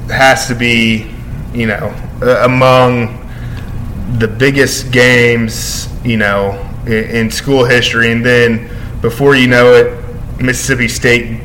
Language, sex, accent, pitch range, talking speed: English, male, American, 115-125 Hz, 125 wpm